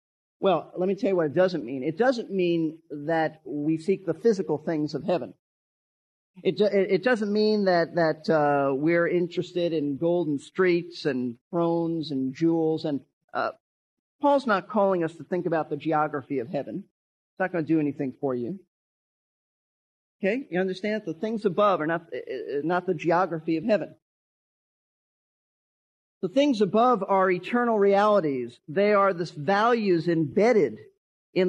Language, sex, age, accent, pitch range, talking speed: English, male, 40-59, American, 165-210 Hz, 160 wpm